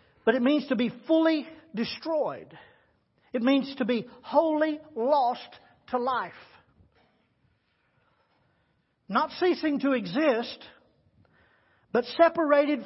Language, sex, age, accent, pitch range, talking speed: English, male, 50-69, American, 215-280 Hz, 100 wpm